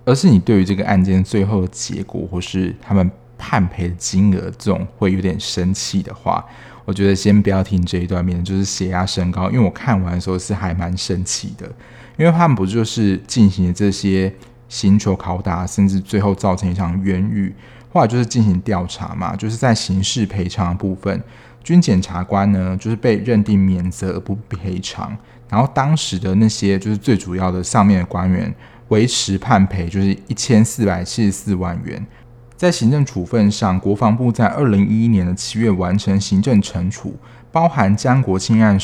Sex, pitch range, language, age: male, 95-115 Hz, Chinese, 20-39